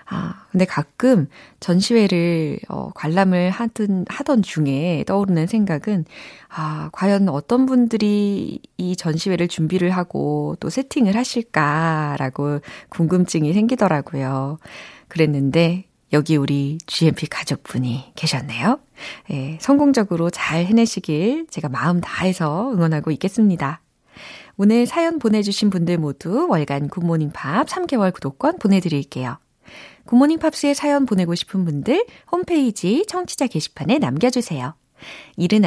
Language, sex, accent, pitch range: Korean, female, native, 155-245 Hz